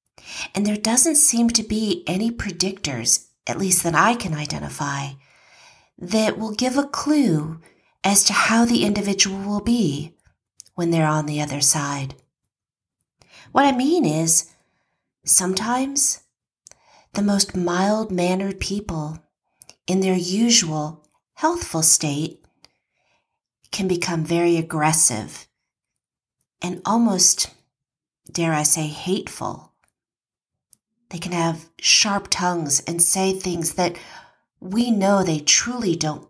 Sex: female